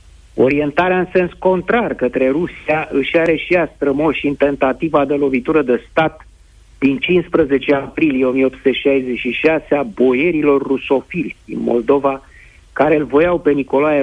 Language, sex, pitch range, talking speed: Romanian, male, 125-155 Hz, 135 wpm